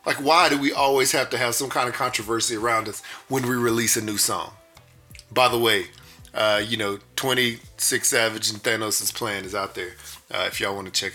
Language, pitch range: English, 105-120 Hz